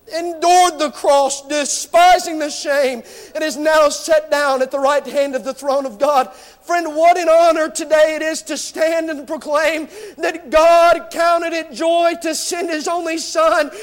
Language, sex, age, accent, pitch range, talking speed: English, male, 50-69, American, 310-335 Hz, 180 wpm